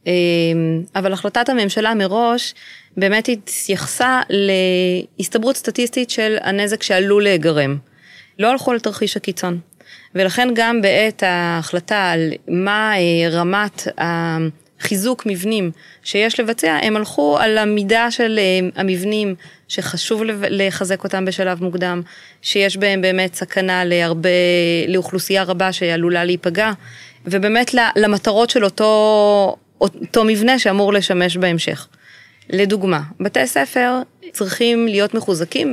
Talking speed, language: 105 wpm, Hebrew